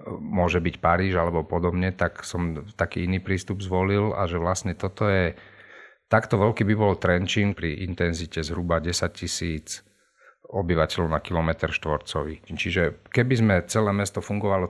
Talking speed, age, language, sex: 145 wpm, 40-59, Slovak, male